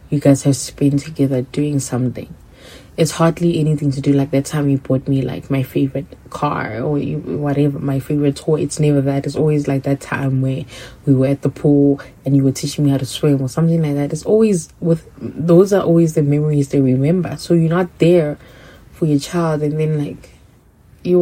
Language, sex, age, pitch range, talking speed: English, female, 20-39, 140-170 Hz, 210 wpm